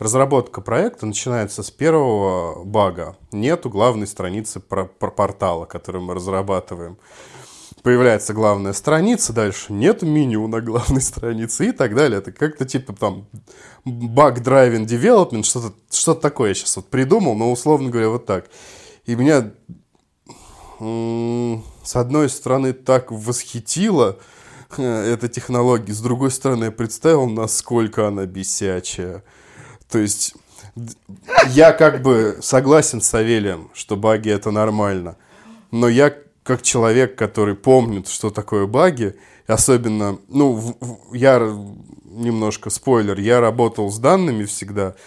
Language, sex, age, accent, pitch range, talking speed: Russian, male, 20-39, native, 105-130 Hz, 120 wpm